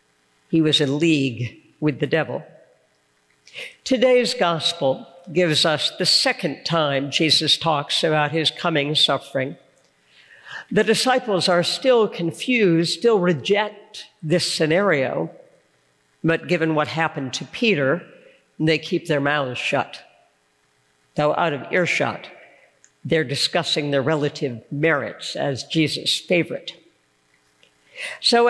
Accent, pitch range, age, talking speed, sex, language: American, 140-200 Hz, 60-79, 110 wpm, female, English